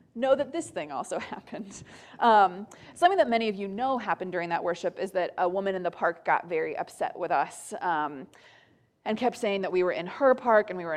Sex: female